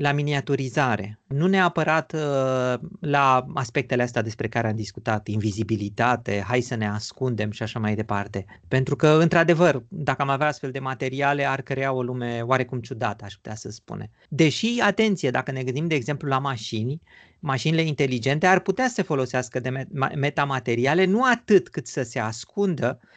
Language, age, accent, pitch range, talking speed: Romanian, 30-49, native, 125-185 Hz, 165 wpm